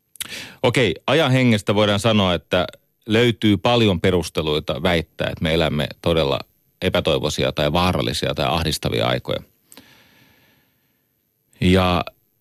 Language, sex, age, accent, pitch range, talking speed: Finnish, male, 30-49, native, 85-110 Hz, 100 wpm